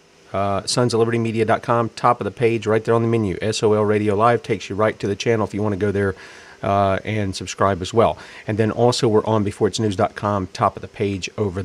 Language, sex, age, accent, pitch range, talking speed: English, male, 40-59, American, 105-120 Hz, 225 wpm